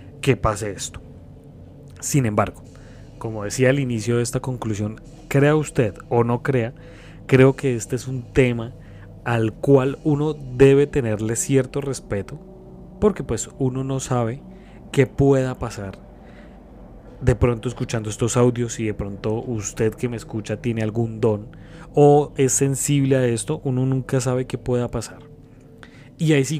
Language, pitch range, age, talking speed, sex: Spanish, 115-140 Hz, 20-39, 150 wpm, male